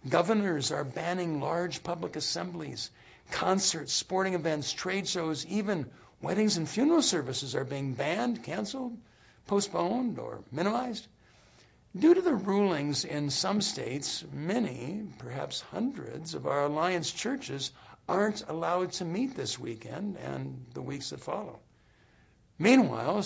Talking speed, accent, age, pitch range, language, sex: 125 wpm, American, 60-79, 140-210 Hz, English, male